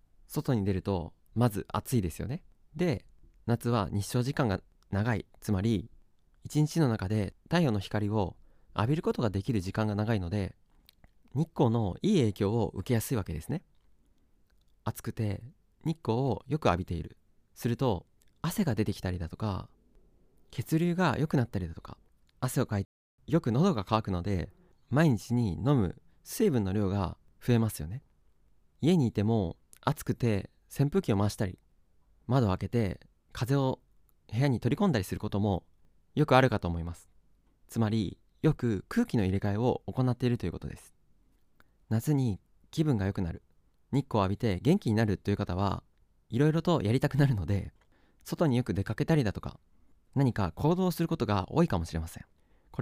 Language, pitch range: Japanese, 95-130 Hz